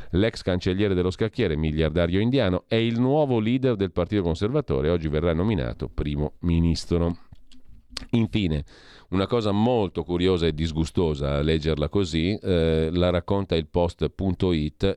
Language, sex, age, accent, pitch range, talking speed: Italian, male, 40-59, native, 85-115 Hz, 135 wpm